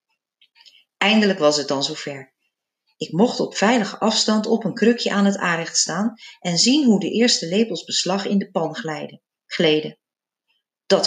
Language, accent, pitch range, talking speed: Dutch, Dutch, 170-235 Hz, 165 wpm